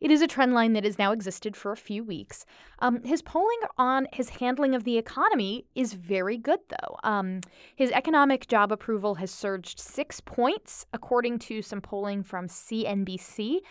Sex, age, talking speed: female, 20-39, 180 wpm